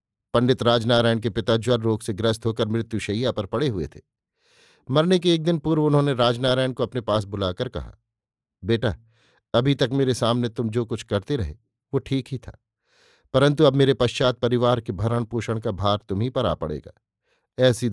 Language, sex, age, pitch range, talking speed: Hindi, male, 50-69, 115-135 Hz, 185 wpm